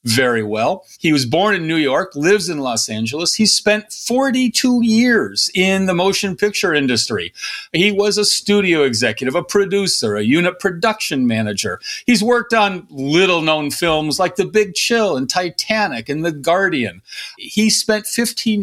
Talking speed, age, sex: 160 wpm, 40-59, male